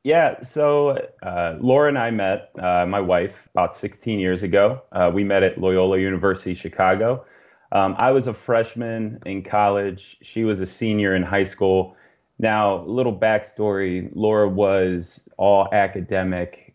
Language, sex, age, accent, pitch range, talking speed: English, male, 30-49, American, 95-110 Hz, 155 wpm